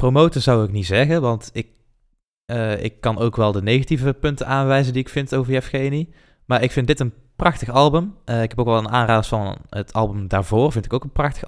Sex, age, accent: male, 20-39, Dutch